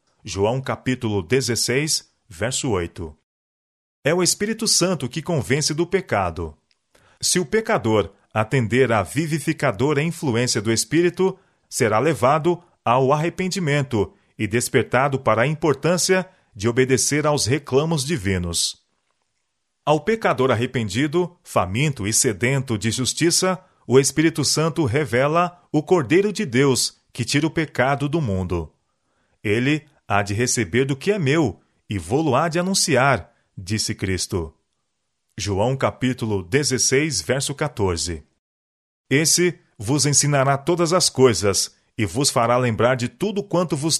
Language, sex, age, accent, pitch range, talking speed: Portuguese, male, 40-59, Brazilian, 110-160 Hz, 125 wpm